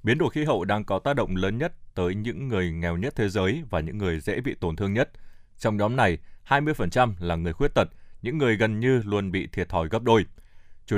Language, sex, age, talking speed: Vietnamese, male, 20-39, 240 wpm